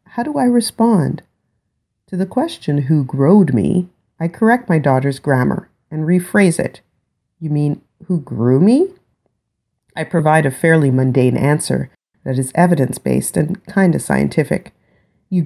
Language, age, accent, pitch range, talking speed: English, 40-59, American, 125-180 Hz, 145 wpm